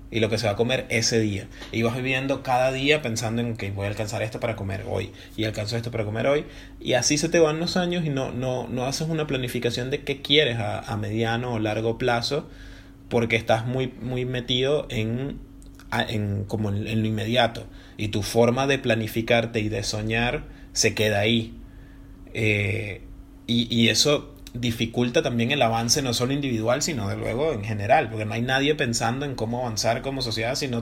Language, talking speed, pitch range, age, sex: Spanish, 195 wpm, 105-120 Hz, 30-49, male